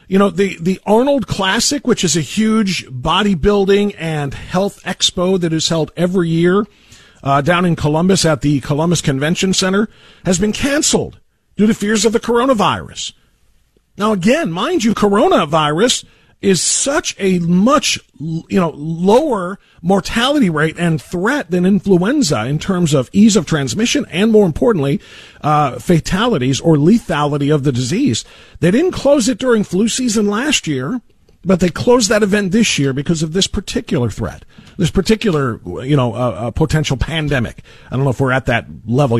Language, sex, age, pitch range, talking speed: English, male, 40-59, 145-205 Hz, 165 wpm